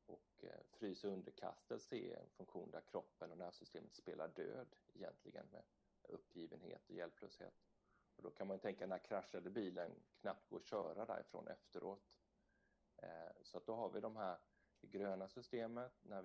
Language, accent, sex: Swedish, native, male